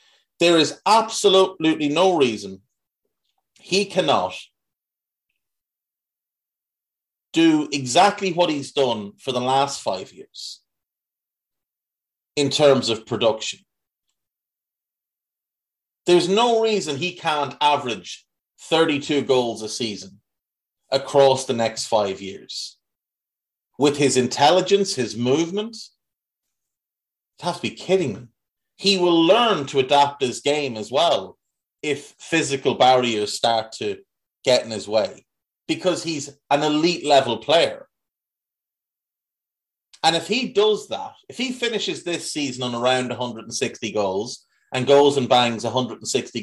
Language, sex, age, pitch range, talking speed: English, male, 30-49, 125-175 Hz, 115 wpm